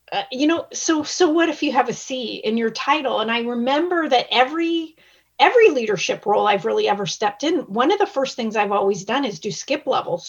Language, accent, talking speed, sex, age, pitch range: English, American, 225 wpm, female, 30-49, 210-295 Hz